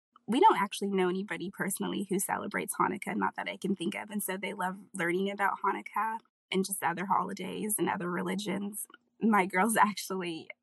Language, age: English, 20-39